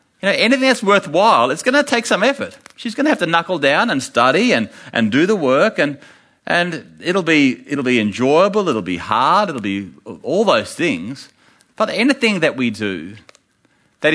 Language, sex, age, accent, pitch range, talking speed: English, male, 40-59, Australian, 110-165 Hz, 195 wpm